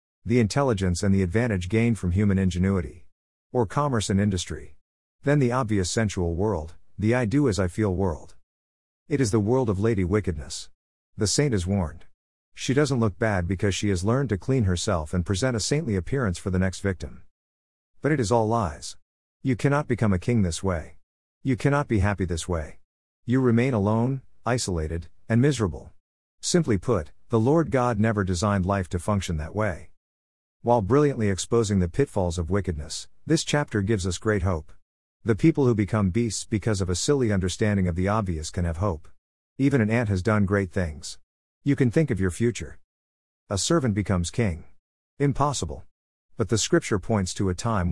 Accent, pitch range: American, 90-115 Hz